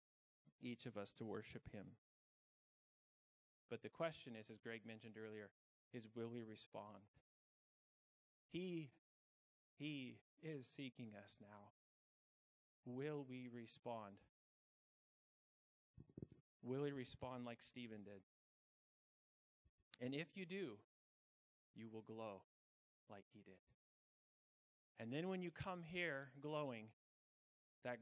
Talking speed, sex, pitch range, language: 110 wpm, male, 110-145 Hz, English